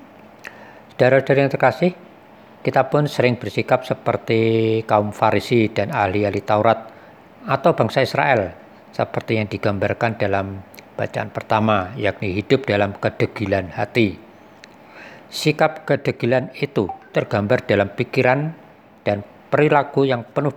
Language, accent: Indonesian, native